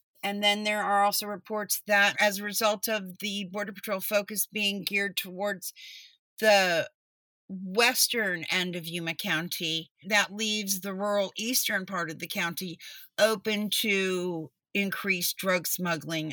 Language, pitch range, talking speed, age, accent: English, 180-215 Hz, 140 wpm, 50-69, American